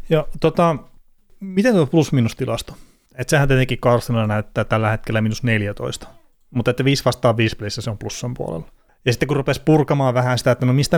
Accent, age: native, 30-49